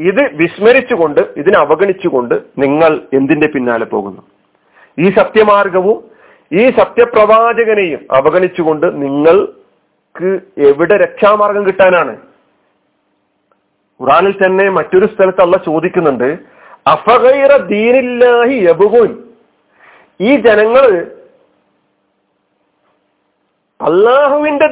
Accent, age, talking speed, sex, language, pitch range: native, 40-59, 65 wpm, male, Malayalam, 190-270 Hz